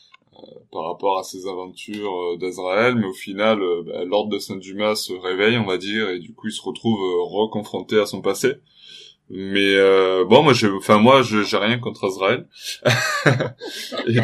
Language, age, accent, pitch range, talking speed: French, 20-39, French, 95-115 Hz, 185 wpm